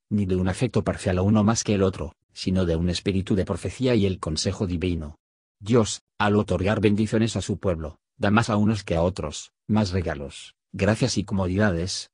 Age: 50-69